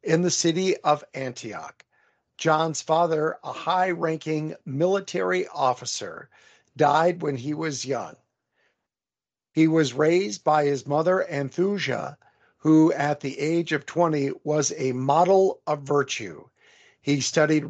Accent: American